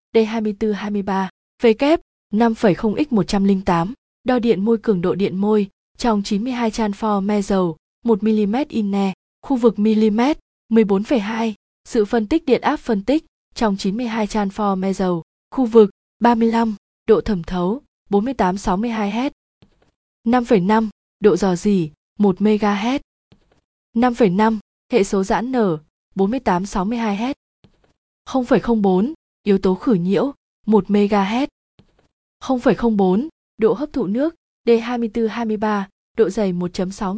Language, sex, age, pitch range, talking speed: Vietnamese, female, 20-39, 200-235 Hz, 130 wpm